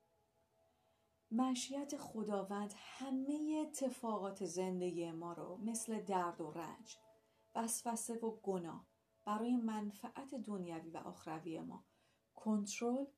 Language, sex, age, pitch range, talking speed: Persian, female, 40-59, 175-230 Hz, 95 wpm